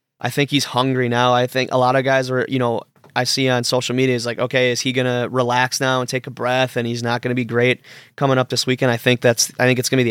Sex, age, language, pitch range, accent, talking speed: male, 20-39, English, 120-135 Hz, American, 310 wpm